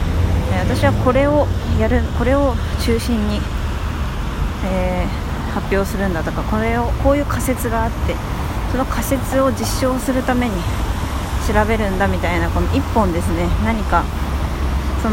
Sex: female